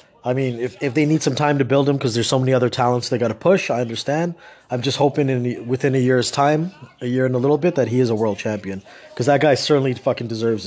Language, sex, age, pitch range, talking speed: English, male, 30-49, 125-150 Hz, 280 wpm